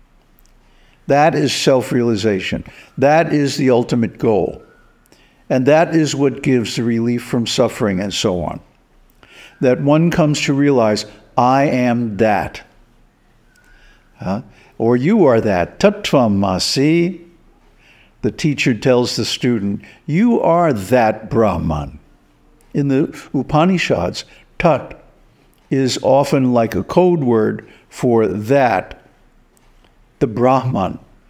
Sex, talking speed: male, 105 wpm